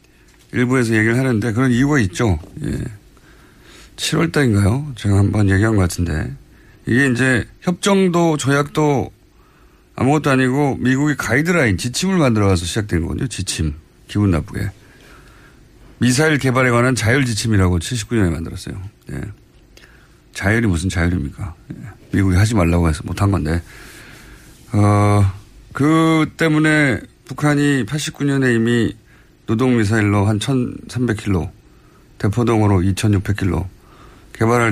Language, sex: Korean, male